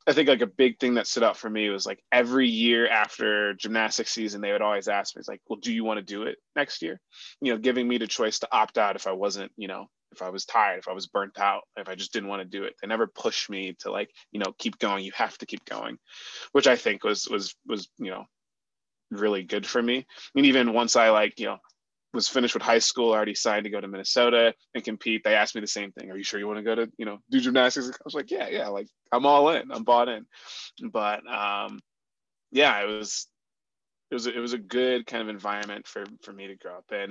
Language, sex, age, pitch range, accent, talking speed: English, male, 20-39, 100-120 Hz, American, 265 wpm